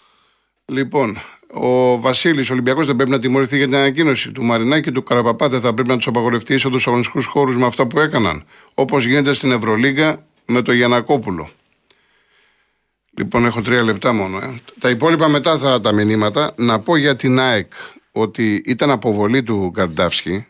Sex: male